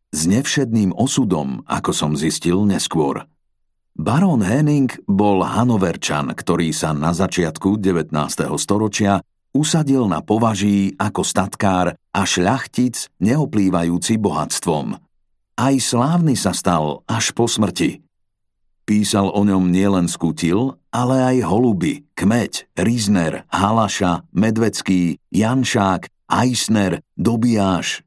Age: 50-69